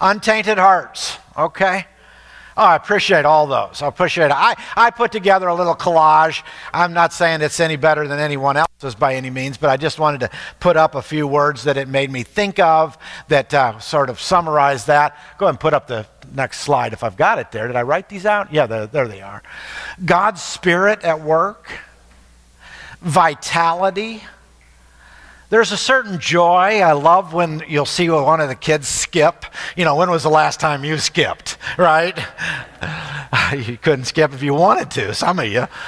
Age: 50-69